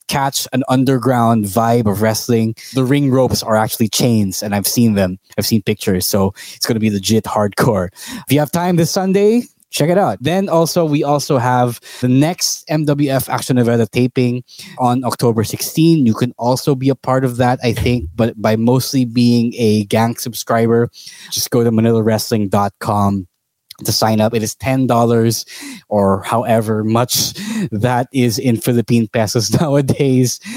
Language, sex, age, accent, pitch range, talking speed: English, male, 20-39, Filipino, 110-130 Hz, 165 wpm